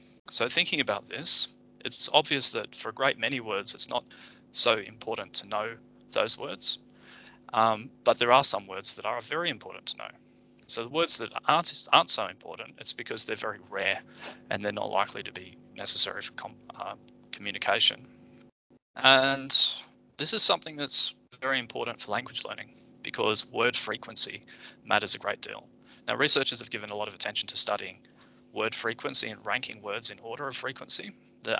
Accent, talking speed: Australian, 175 wpm